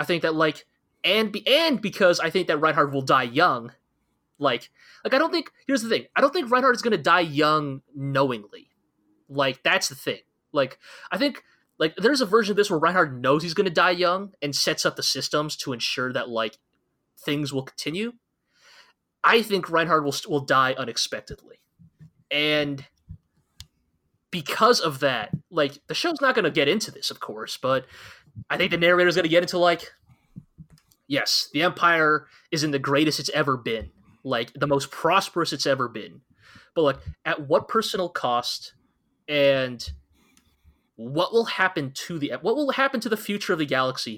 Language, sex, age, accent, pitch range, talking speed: English, male, 20-39, American, 130-180 Hz, 185 wpm